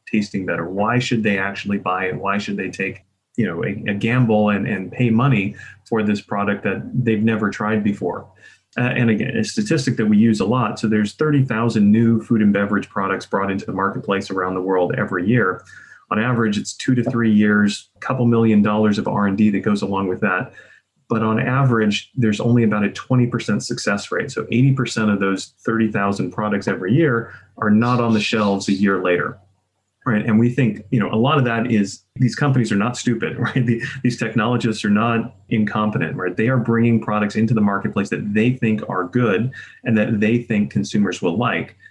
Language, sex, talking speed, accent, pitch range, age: English, male, 205 wpm, American, 105-120 Hz, 30-49